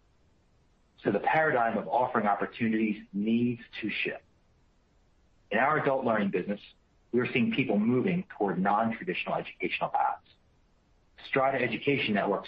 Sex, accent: male, American